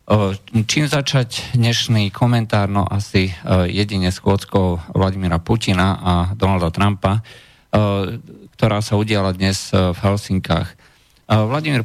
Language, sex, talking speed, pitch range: Slovak, male, 100 wpm, 90-105 Hz